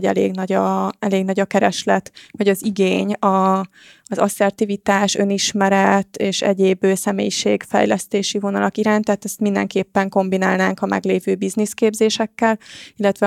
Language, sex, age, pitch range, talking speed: Hungarian, female, 20-39, 195-210 Hz, 120 wpm